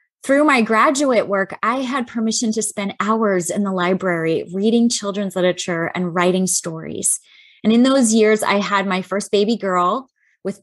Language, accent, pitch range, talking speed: English, American, 185-225 Hz, 170 wpm